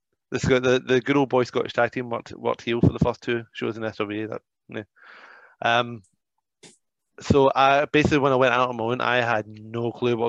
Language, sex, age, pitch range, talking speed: English, male, 20-39, 115-125 Hz, 220 wpm